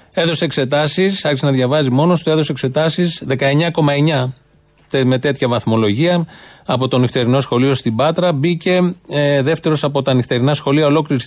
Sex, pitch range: male, 130-155 Hz